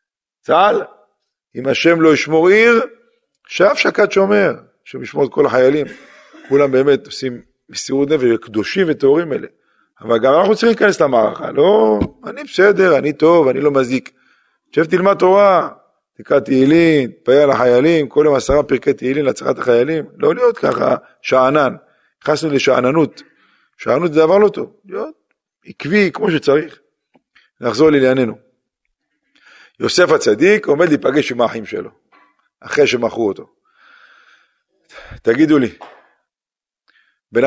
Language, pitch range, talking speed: Hebrew, 130-205 Hz, 130 wpm